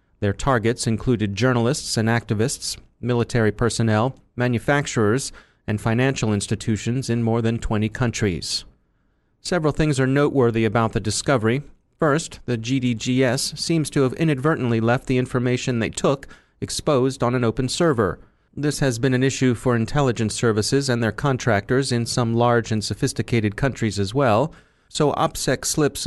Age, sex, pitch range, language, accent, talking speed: 30-49, male, 110-135 Hz, English, American, 145 wpm